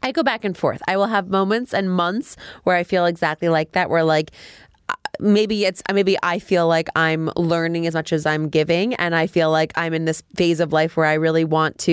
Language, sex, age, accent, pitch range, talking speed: English, female, 20-39, American, 165-205 Hz, 235 wpm